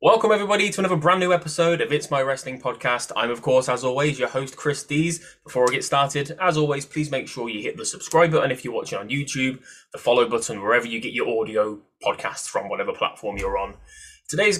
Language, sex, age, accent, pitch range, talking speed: English, male, 20-39, British, 120-160 Hz, 225 wpm